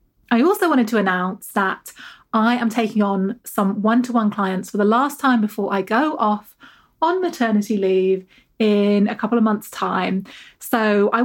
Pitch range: 200-245 Hz